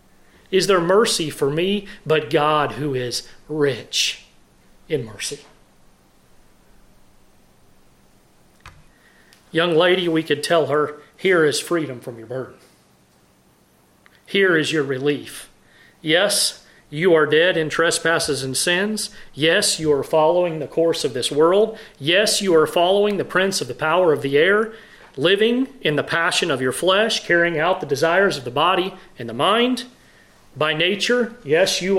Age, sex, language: 40-59, male, English